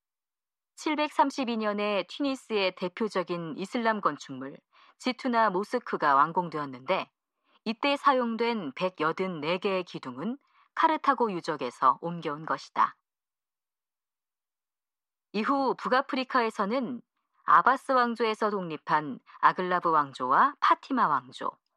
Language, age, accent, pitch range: Korean, 40-59, native, 180-250 Hz